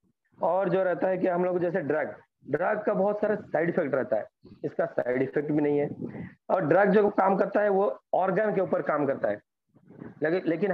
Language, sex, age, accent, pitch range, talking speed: Hindi, male, 40-59, native, 165-205 Hz, 205 wpm